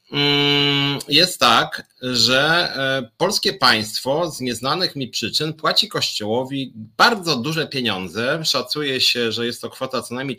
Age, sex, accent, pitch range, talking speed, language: 30-49, male, native, 115-145 Hz, 125 wpm, Polish